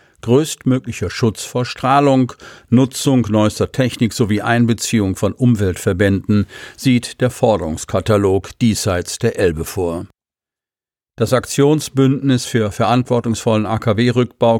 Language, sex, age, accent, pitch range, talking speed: German, male, 50-69, German, 100-125 Hz, 95 wpm